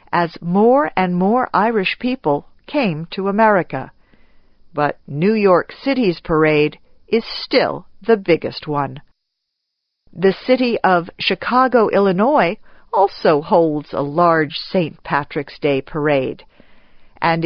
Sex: female